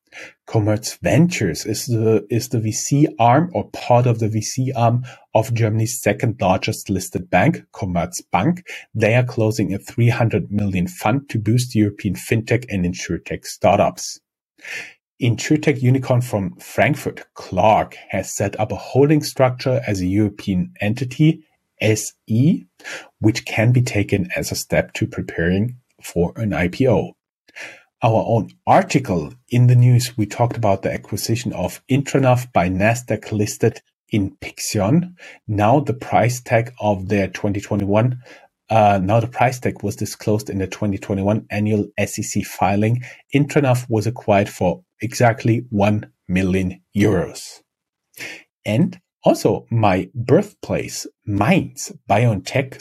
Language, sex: English, male